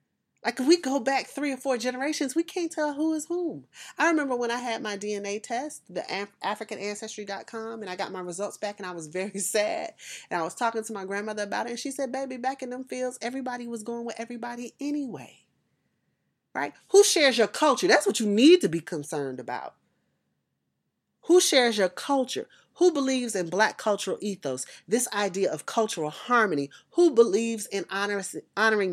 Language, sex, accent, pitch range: English, female, American, 195-270 Hz